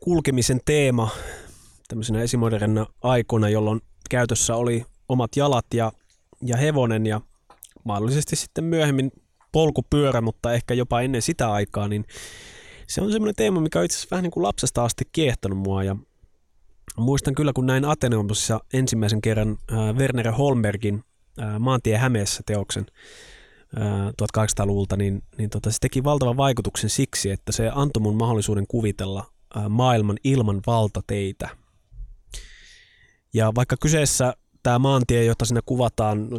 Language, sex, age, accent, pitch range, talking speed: Finnish, male, 20-39, native, 105-125 Hz, 130 wpm